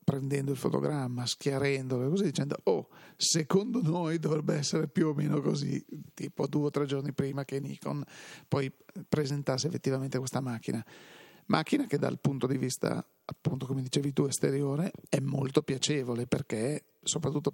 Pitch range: 135-160 Hz